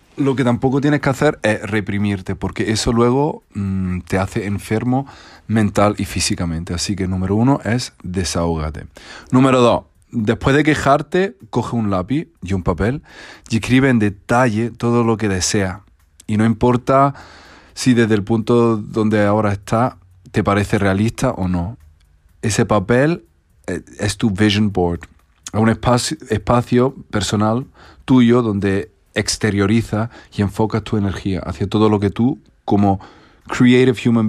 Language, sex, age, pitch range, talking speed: Spanish, male, 40-59, 95-120 Hz, 150 wpm